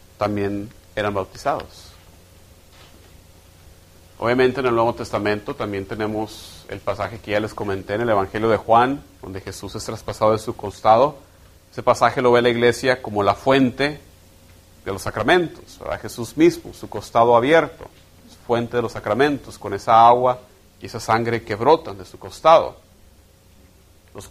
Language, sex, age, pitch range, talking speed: English, male, 40-59, 90-115 Hz, 155 wpm